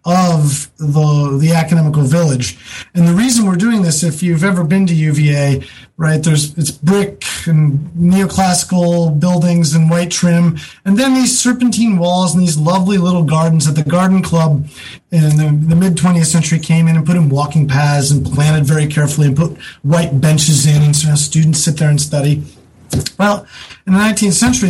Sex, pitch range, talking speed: male, 150-180 Hz, 180 wpm